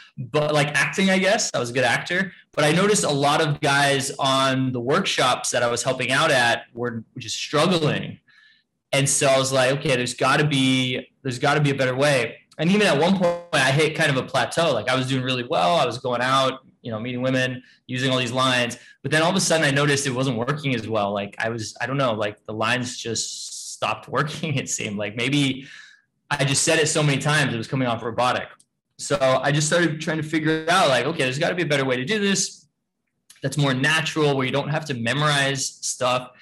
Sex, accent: male, American